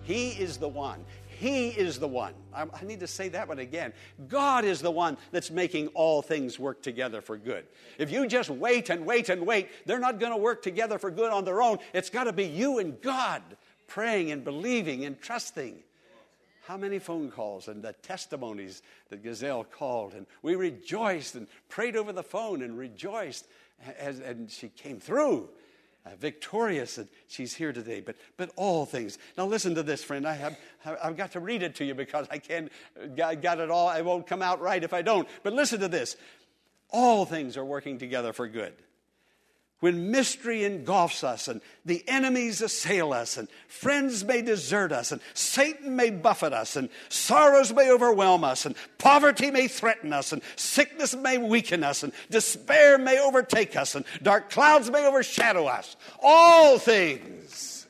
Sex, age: male, 60-79